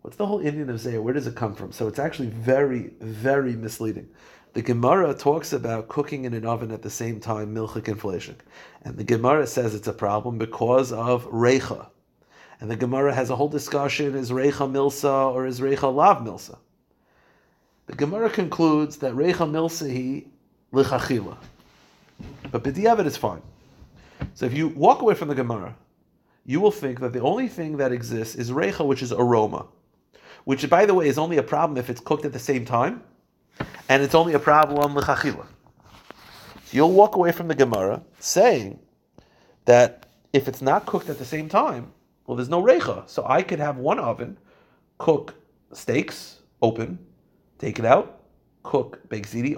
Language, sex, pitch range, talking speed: English, male, 120-150 Hz, 175 wpm